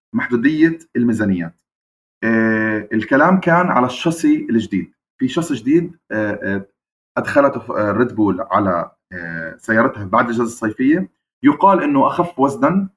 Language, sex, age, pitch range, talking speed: Arabic, male, 30-49, 110-165 Hz, 100 wpm